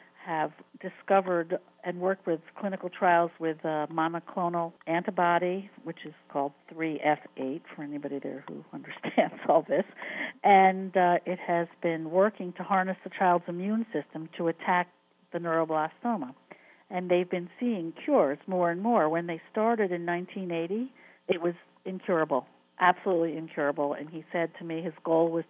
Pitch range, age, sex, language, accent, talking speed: 160-185 Hz, 50-69, female, English, American, 150 wpm